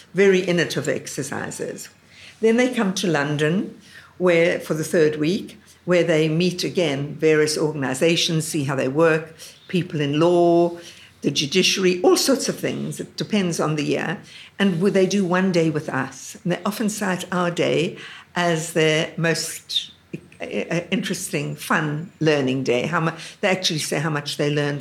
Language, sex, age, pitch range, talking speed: English, female, 60-79, 150-175 Hz, 160 wpm